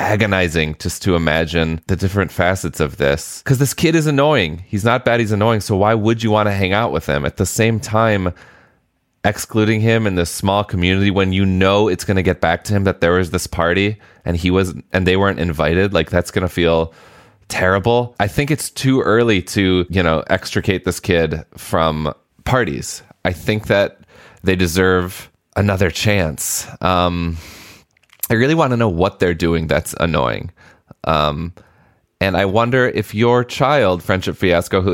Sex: male